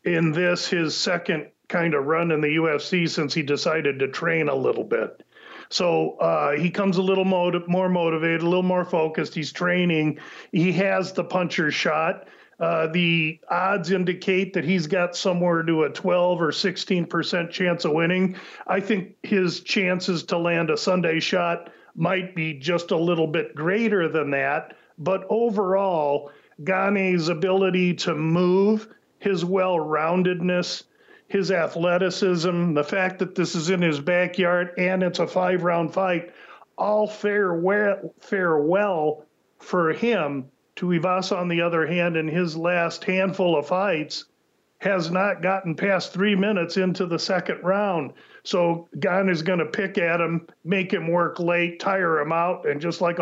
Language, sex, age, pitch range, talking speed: English, male, 40-59, 165-190 Hz, 160 wpm